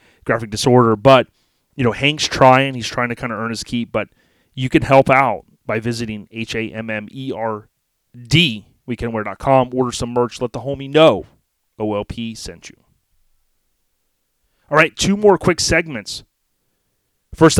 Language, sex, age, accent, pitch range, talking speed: English, male, 30-49, American, 120-140 Hz, 155 wpm